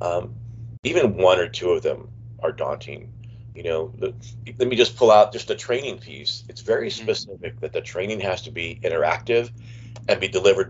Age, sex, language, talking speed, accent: 30-49, male, English, 185 wpm, American